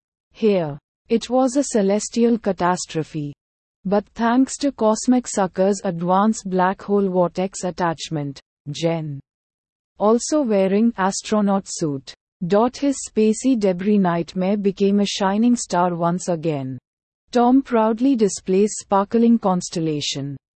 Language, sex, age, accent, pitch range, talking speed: English, female, 30-49, Indian, 180-225 Hz, 105 wpm